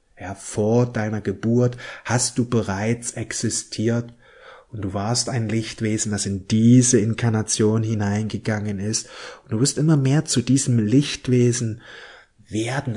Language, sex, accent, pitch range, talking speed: German, male, German, 110-135 Hz, 130 wpm